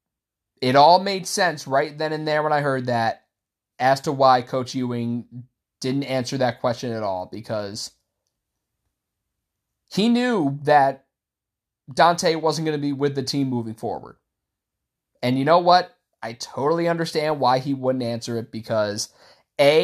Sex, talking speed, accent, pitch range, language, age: male, 155 wpm, American, 110-165 Hz, English, 30-49